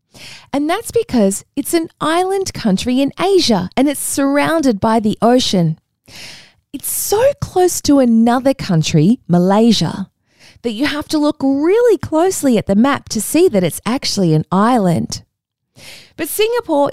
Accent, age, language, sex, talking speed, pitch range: Australian, 20-39, English, female, 145 wpm, 185-285 Hz